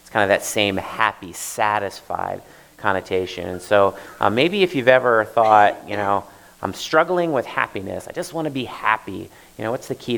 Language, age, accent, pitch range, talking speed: English, 30-49, American, 105-130 Hz, 190 wpm